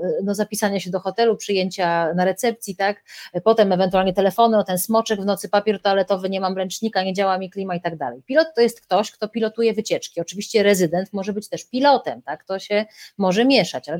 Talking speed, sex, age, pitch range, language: 210 wpm, female, 30-49, 185-225 Hz, Polish